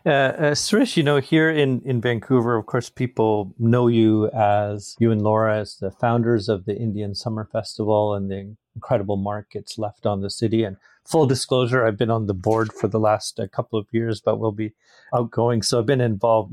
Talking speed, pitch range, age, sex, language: 205 wpm, 110-130 Hz, 40-59, male, English